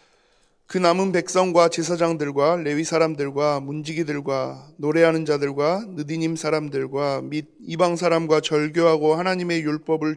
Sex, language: male, Korean